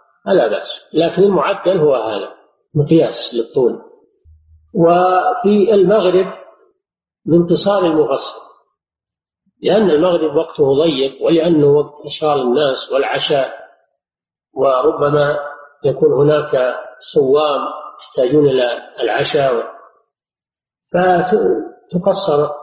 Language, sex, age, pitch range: Arabic, male, 50-69, 145-235 Hz